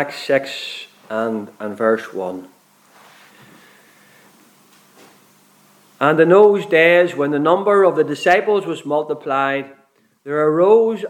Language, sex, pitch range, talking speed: English, male, 150-200 Hz, 105 wpm